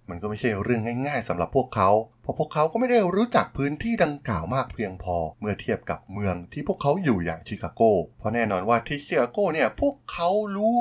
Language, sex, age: Thai, male, 20-39